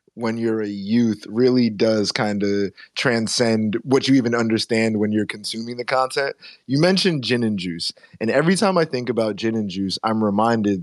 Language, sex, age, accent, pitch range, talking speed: English, male, 20-39, American, 110-135 Hz, 190 wpm